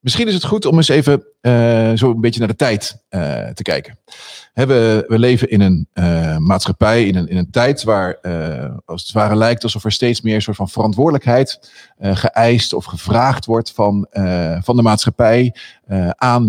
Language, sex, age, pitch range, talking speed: Dutch, male, 40-59, 95-120 Hz, 200 wpm